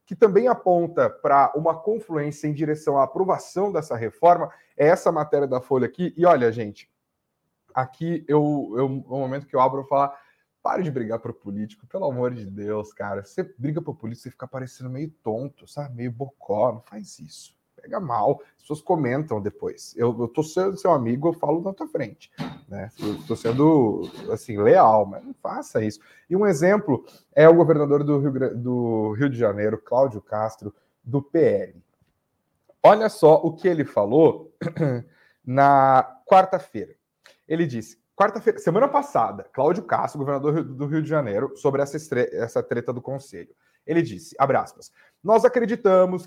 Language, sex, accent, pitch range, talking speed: Portuguese, male, Brazilian, 130-185 Hz, 170 wpm